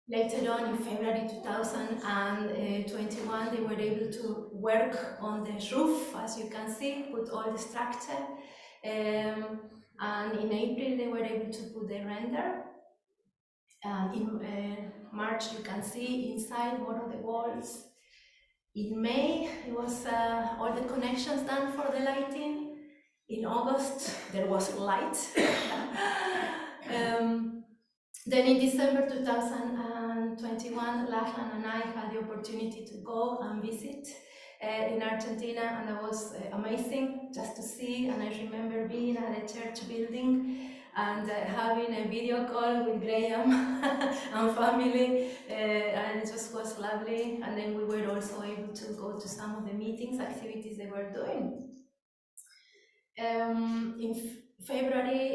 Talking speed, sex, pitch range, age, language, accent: 140 wpm, female, 215-250 Hz, 30-49, English, Spanish